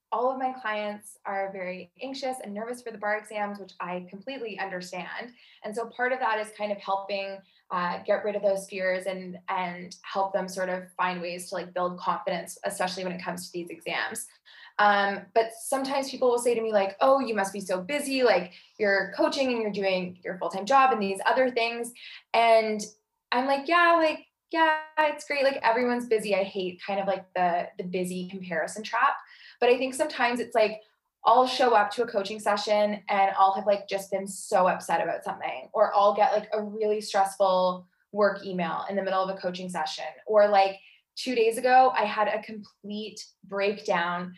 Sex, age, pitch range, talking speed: female, 20-39, 190-225 Hz, 200 wpm